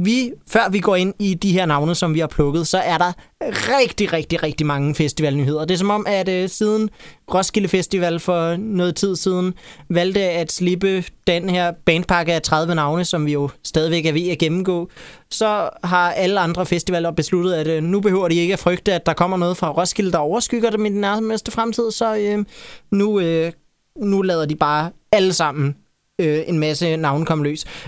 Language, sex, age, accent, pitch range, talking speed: Danish, male, 20-39, native, 165-205 Hz, 200 wpm